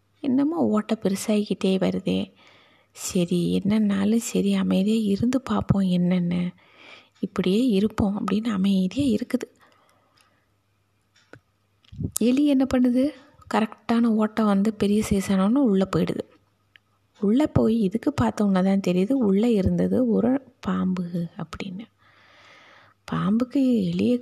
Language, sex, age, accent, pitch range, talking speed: Tamil, female, 20-39, native, 185-230 Hz, 95 wpm